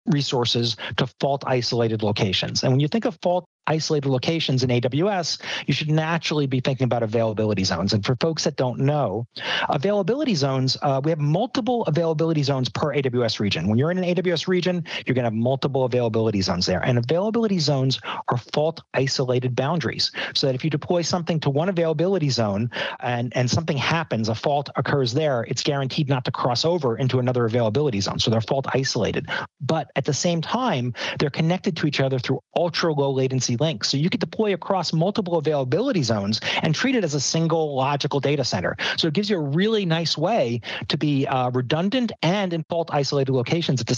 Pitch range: 125-170 Hz